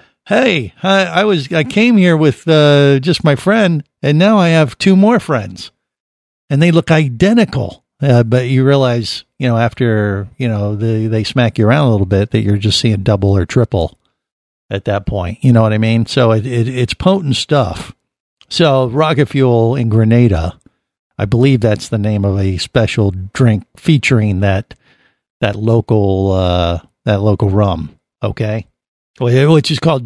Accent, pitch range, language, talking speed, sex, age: American, 110-145 Hz, English, 175 wpm, male, 50-69